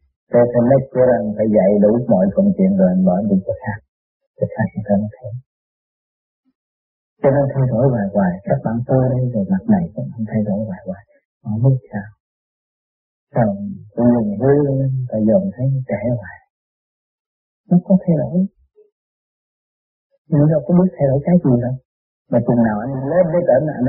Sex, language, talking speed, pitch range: male, Vietnamese, 165 wpm, 120-195 Hz